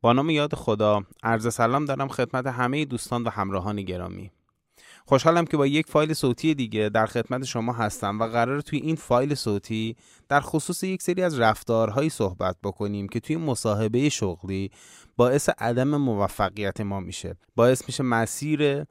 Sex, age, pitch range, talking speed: male, 20-39, 110-145 Hz, 160 wpm